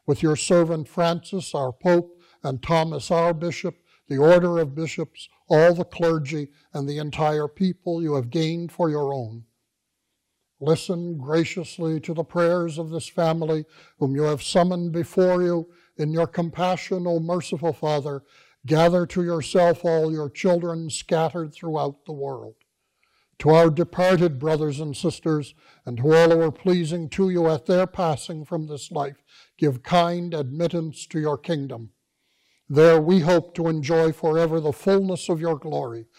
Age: 60-79